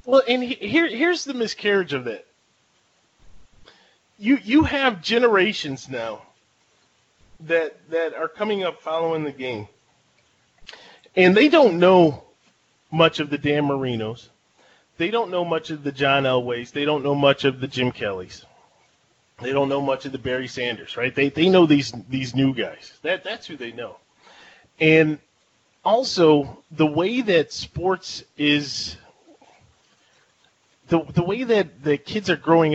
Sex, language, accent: male, English, American